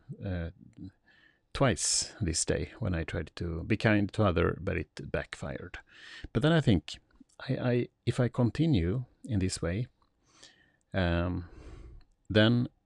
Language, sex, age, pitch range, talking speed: Swedish, male, 30-49, 85-110 Hz, 125 wpm